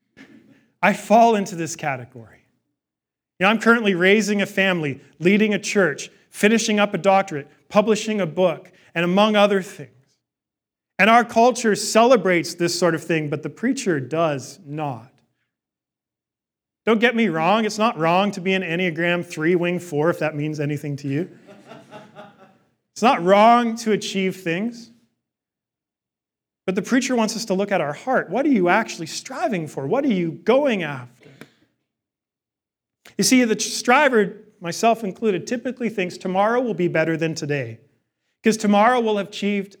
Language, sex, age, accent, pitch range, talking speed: English, male, 40-59, American, 175-220 Hz, 155 wpm